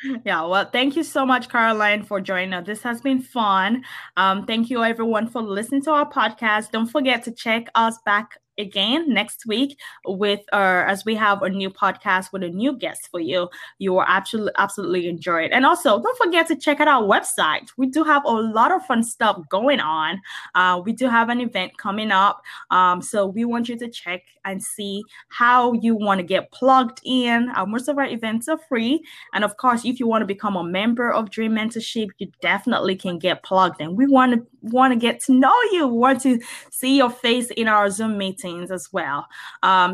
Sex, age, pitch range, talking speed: female, 20-39, 190-245 Hz, 215 wpm